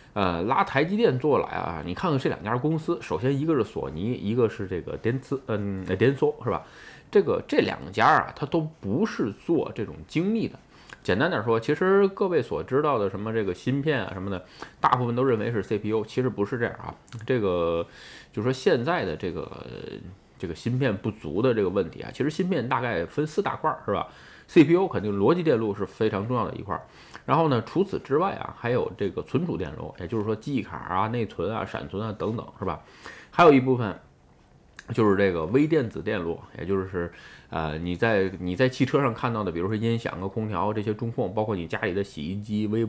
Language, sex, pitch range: Chinese, male, 95-130 Hz